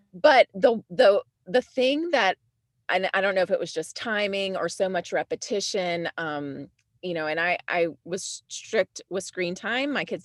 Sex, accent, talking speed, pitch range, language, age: female, American, 190 wpm, 170-215 Hz, English, 30-49